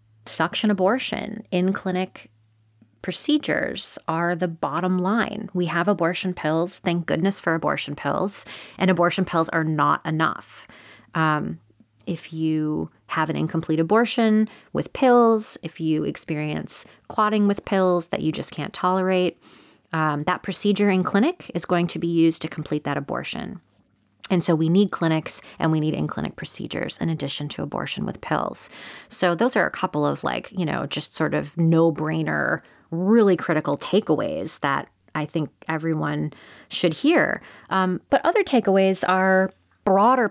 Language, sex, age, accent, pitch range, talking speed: English, female, 30-49, American, 155-190 Hz, 150 wpm